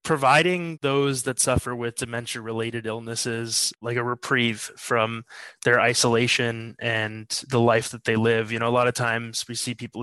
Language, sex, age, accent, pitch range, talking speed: English, male, 20-39, American, 110-125 Hz, 170 wpm